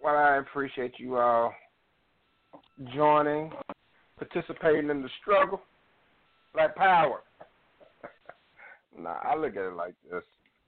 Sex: male